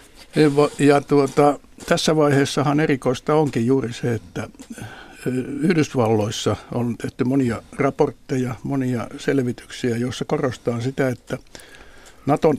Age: 60-79